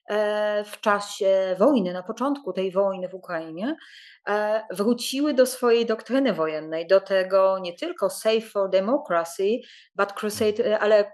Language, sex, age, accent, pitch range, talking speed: English, female, 30-49, Polish, 205-255 Hz, 130 wpm